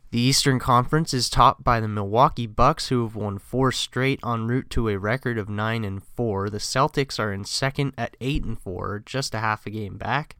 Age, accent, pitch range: 20-39, American, 105-135 Hz